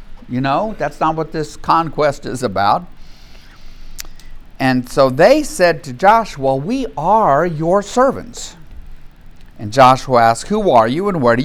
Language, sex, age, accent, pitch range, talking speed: English, male, 50-69, American, 135-200 Hz, 145 wpm